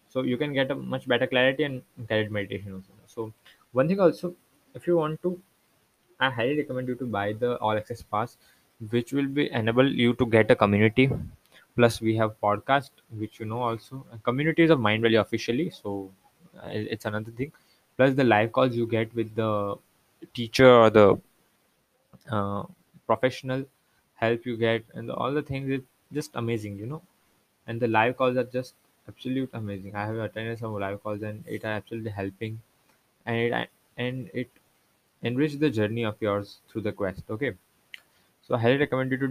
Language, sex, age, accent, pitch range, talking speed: English, male, 20-39, Indian, 110-130 Hz, 180 wpm